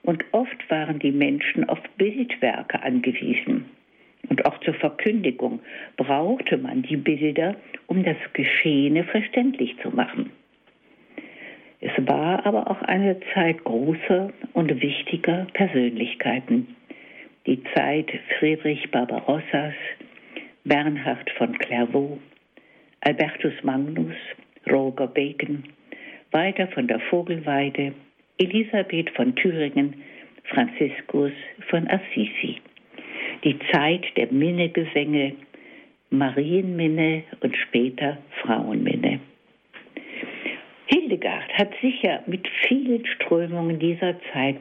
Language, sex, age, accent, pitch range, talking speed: German, female, 60-79, German, 140-205 Hz, 95 wpm